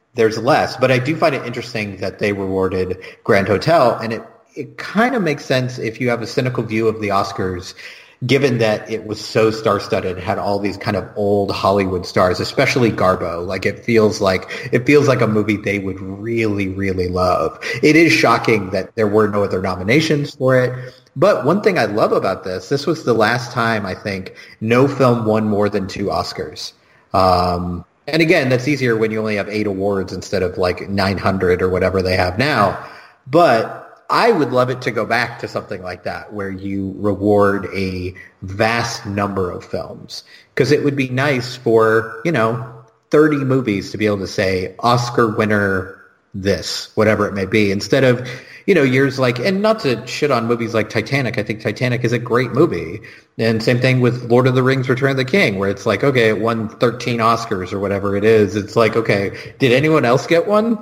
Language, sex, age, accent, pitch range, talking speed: English, male, 30-49, American, 100-130 Hz, 205 wpm